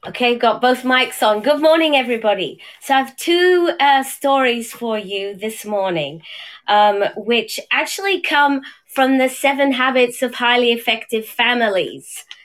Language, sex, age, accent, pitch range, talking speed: English, female, 30-49, British, 220-280 Hz, 145 wpm